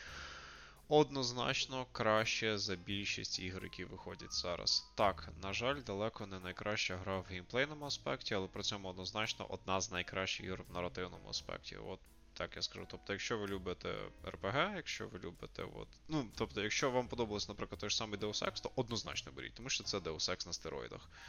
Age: 20-39